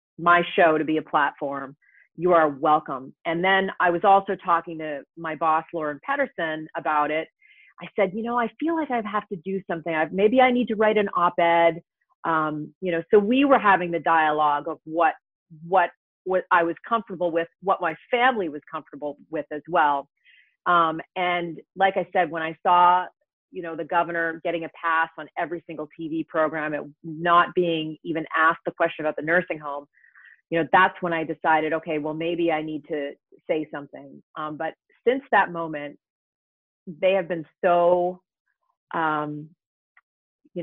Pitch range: 155-190 Hz